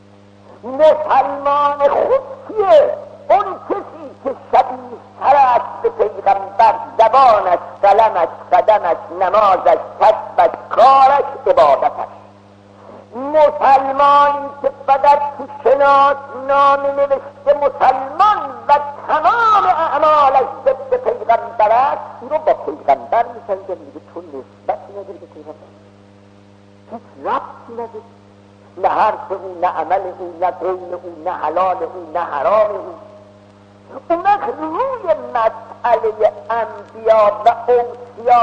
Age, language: 50-69, Persian